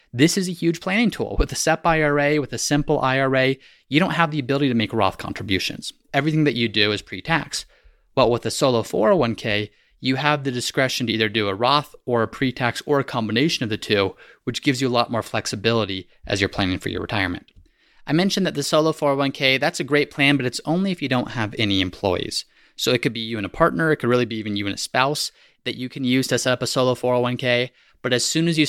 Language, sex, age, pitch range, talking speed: English, male, 30-49, 110-145 Hz, 245 wpm